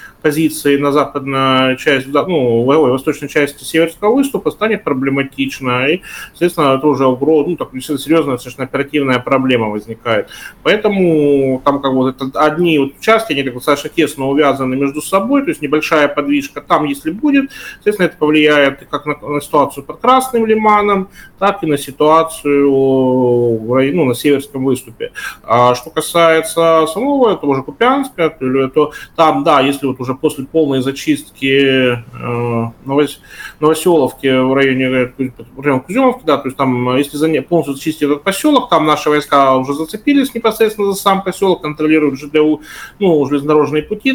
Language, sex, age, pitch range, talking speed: Russian, male, 20-39, 135-170 Hz, 145 wpm